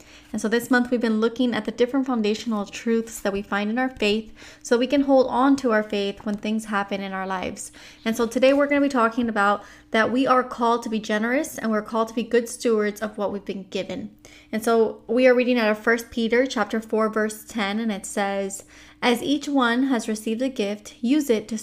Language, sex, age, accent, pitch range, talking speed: English, female, 20-39, American, 210-245 Hz, 240 wpm